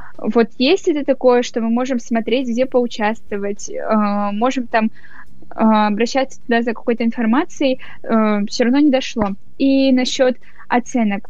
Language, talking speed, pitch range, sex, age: Russian, 145 wpm, 220-270 Hz, female, 10-29